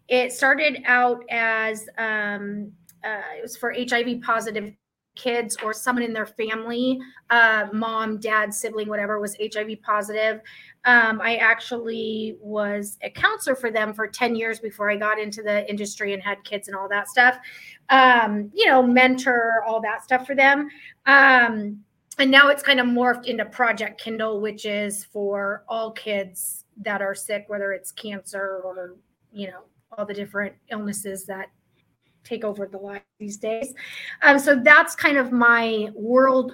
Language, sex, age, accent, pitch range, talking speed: English, female, 30-49, American, 210-250 Hz, 165 wpm